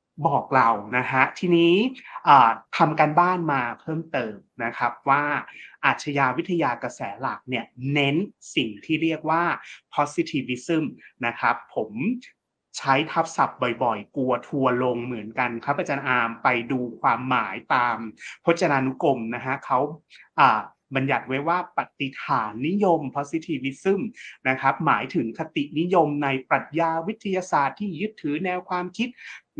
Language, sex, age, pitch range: Thai, male, 30-49, 135-175 Hz